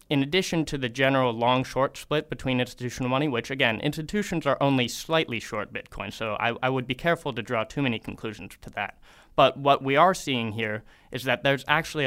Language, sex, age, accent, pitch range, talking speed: English, male, 20-39, American, 115-140 Hz, 210 wpm